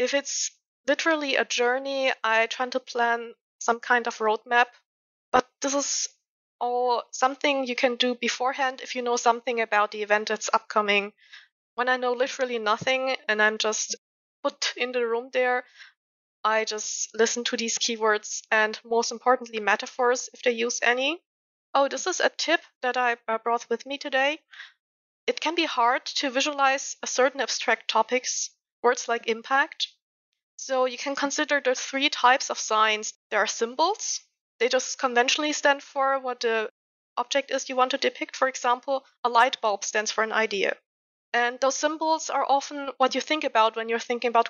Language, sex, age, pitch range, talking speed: English, female, 20-39, 230-275 Hz, 175 wpm